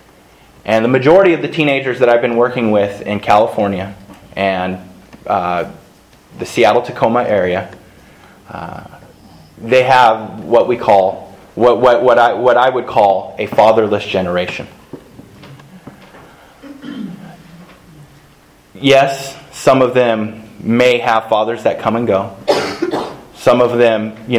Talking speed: 125 wpm